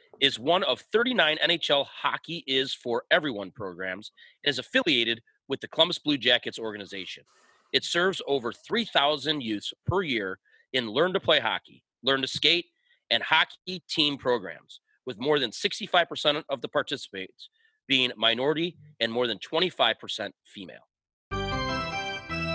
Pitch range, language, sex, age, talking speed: 120-165 Hz, English, male, 30-49, 130 wpm